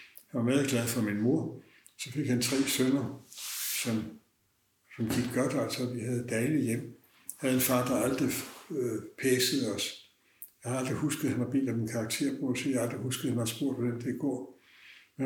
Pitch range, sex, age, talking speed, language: 110-130 Hz, male, 60-79, 210 wpm, Danish